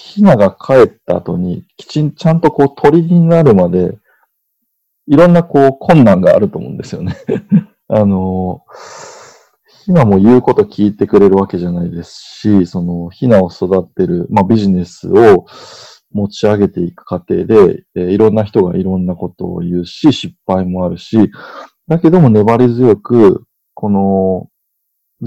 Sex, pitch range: male, 95-145 Hz